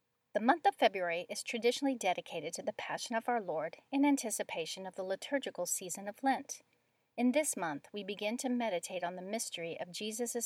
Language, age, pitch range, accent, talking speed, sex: English, 40-59, 180-245 Hz, American, 190 wpm, female